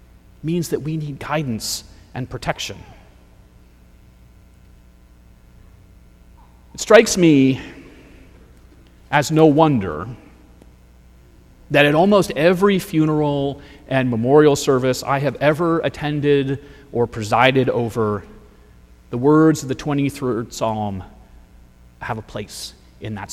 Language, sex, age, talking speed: English, male, 30-49, 100 wpm